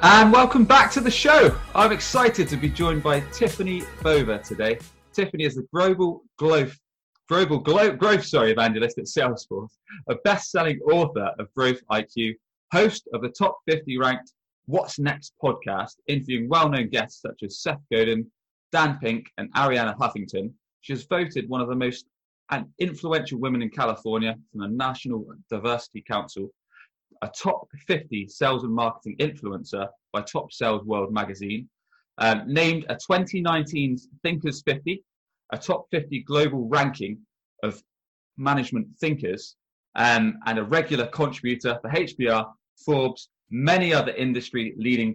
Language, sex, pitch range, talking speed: English, male, 115-165 Hz, 140 wpm